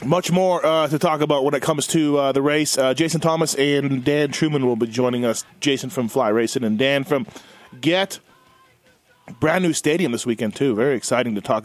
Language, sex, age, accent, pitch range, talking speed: English, male, 30-49, American, 140-175 Hz, 210 wpm